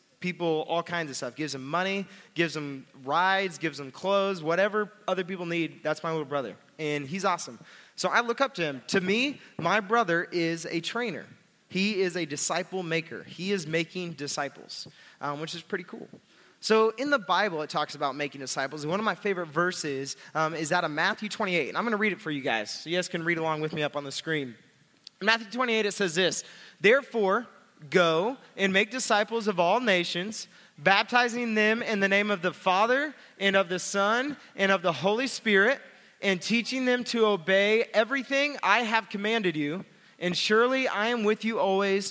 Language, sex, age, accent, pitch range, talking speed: English, male, 20-39, American, 165-215 Hz, 200 wpm